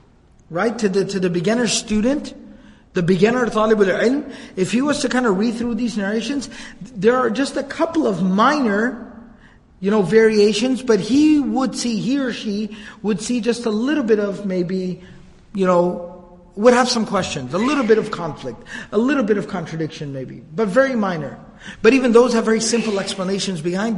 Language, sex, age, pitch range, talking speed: English, male, 50-69, 190-235 Hz, 185 wpm